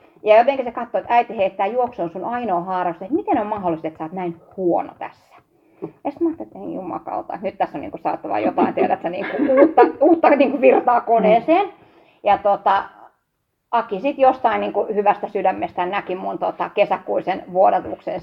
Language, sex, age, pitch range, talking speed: Finnish, female, 30-49, 190-280 Hz, 185 wpm